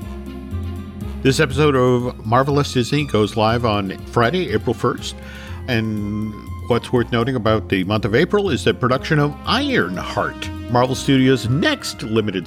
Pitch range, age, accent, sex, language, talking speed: 110-140 Hz, 50-69, American, male, English, 140 wpm